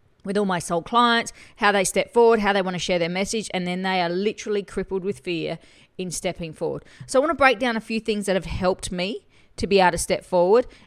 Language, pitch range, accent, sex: English, 165-205 Hz, Australian, female